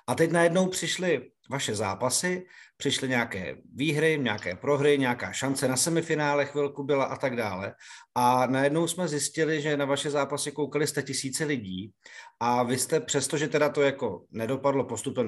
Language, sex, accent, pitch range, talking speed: Czech, male, native, 125-150 Hz, 165 wpm